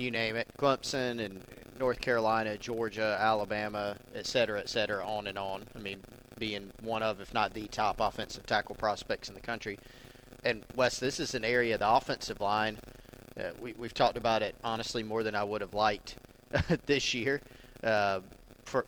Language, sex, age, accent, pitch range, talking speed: English, male, 40-59, American, 105-125 Hz, 180 wpm